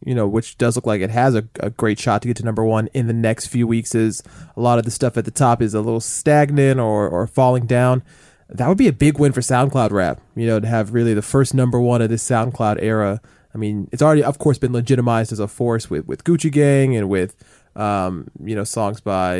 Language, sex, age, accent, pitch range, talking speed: English, male, 20-39, American, 110-130 Hz, 255 wpm